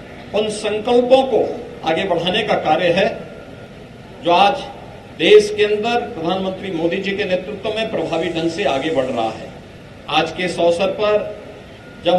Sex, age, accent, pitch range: male, 50-69, native, 175-215 Hz